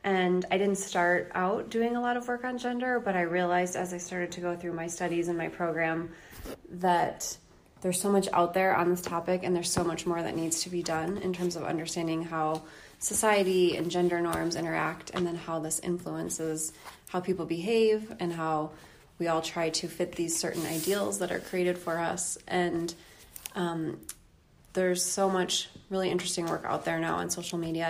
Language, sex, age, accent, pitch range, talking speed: English, female, 20-39, American, 165-185 Hz, 200 wpm